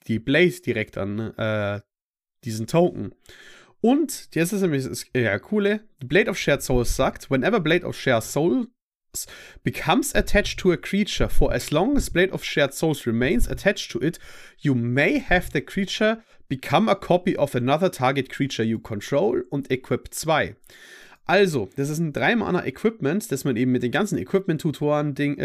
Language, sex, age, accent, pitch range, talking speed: German, male, 30-49, German, 125-190 Hz, 170 wpm